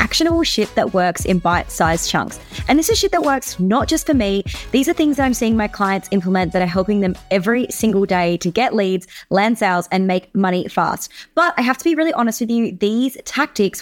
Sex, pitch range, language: female, 185-255 Hz, English